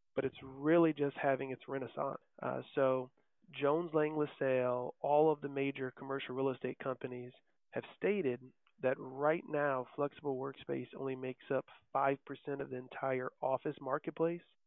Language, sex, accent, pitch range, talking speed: English, male, American, 130-150 Hz, 145 wpm